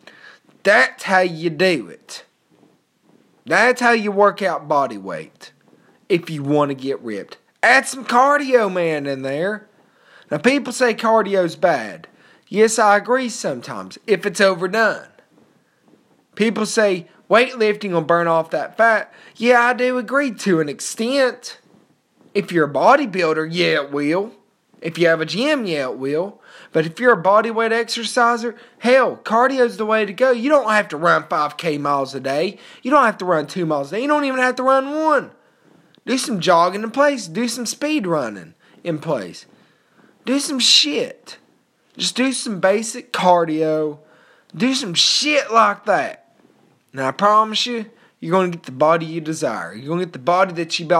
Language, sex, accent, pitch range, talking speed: English, male, American, 170-240 Hz, 175 wpm